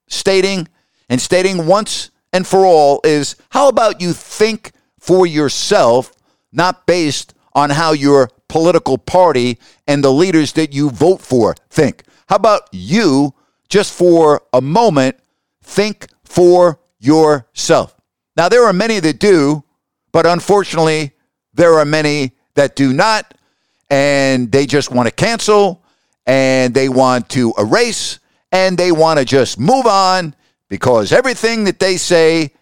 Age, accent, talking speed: 50-69, American, 140 wpm